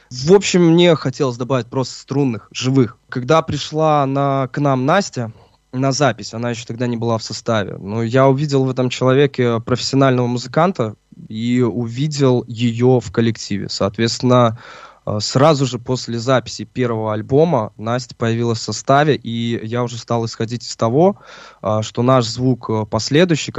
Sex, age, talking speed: male, 20-39, 145 wpm